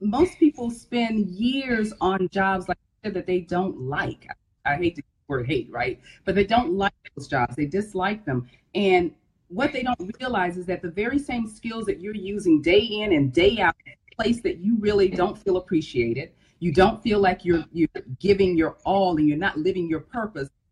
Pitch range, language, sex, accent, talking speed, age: 185-255 Hz, English, female, American, 210 wpm, 40-59